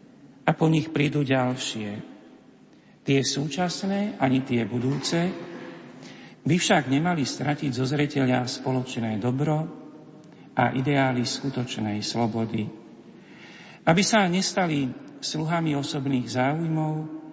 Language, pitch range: Slovak, 125-150 Hz